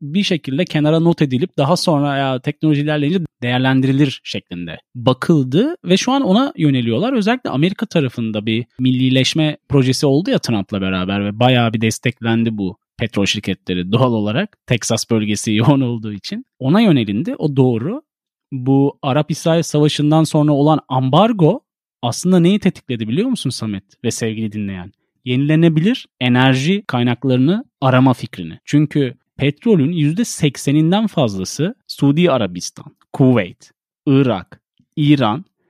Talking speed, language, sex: 125 wpm, Turkish, male